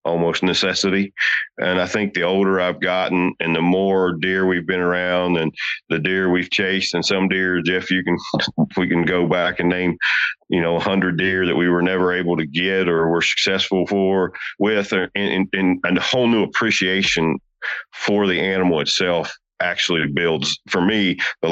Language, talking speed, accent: English, 185 wpm, American